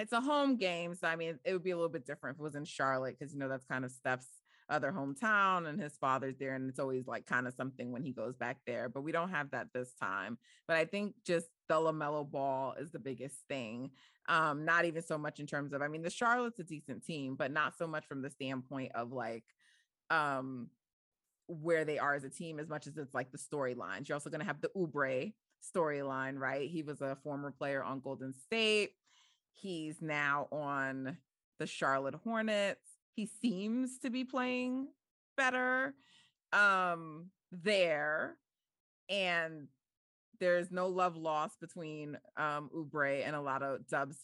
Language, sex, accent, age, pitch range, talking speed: English, female, American, 30-49, 135-180 Hz, 195 wpm